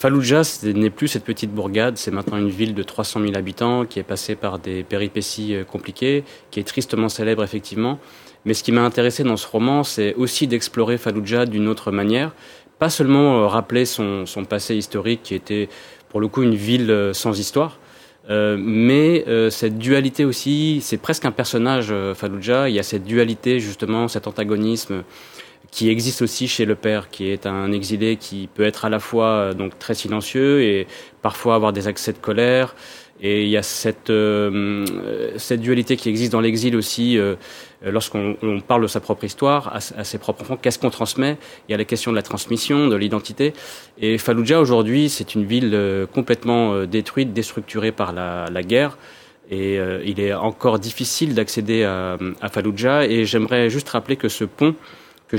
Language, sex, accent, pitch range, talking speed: French, male, French, 105-120 Hz, 190 wpm